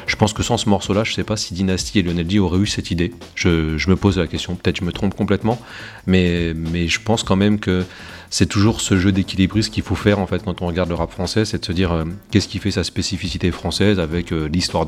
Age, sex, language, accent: 30-49, male, French, French